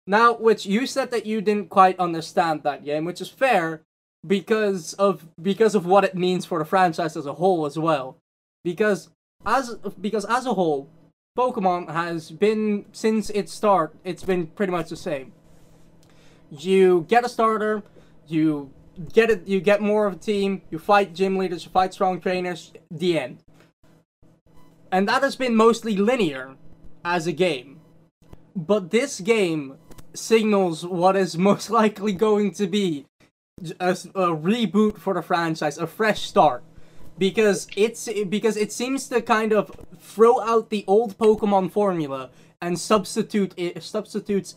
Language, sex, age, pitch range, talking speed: English, male, 20-39, 165-210 Hz, 160 wpm